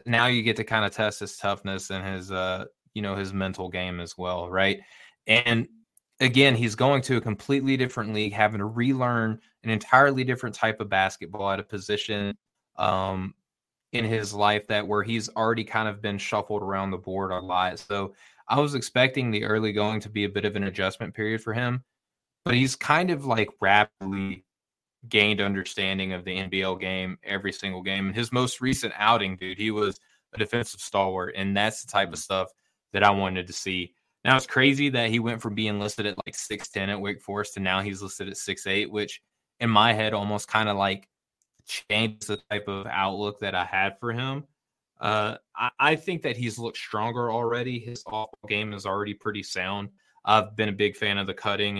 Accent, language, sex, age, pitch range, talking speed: American, English, male, 20-39, 95-115 Hz, 200 wpm